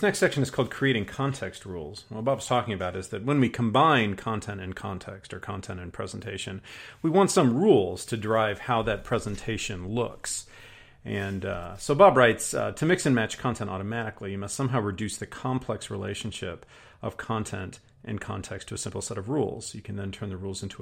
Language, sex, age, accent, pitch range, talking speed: English, male, 40-59, American, 95-125 Hz, 200 wpm